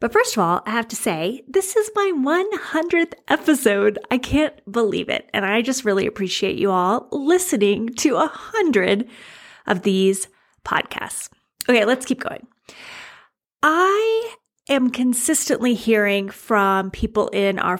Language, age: English, 30-49